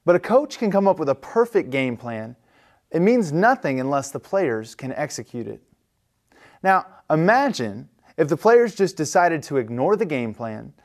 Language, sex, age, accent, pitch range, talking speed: English, male, 20-39, American, 130-190 Hz, 175 wpm